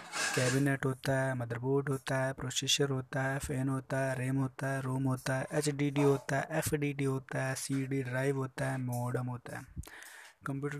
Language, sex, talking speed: Hindi, male, 185 wpm